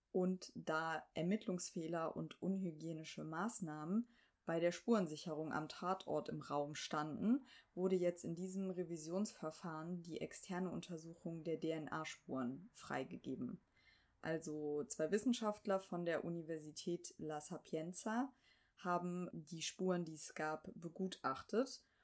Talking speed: 110 wpm